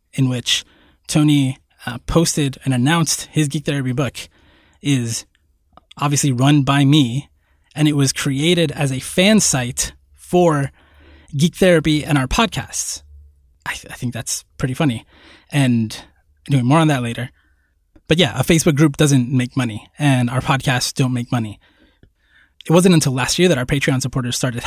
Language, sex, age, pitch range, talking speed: English, male, 20-39, 120-150 Hz, 165 wpm